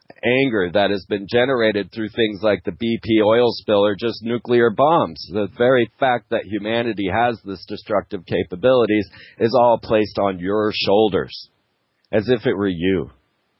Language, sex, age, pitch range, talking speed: English, male, 40-59, 105-125 Hz, 160 wpm